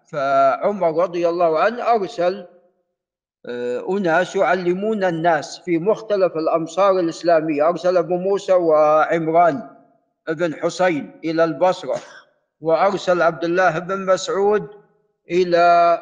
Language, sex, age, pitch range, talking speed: Arabic, male, 50-69, 165-200 Hz, 100 wpm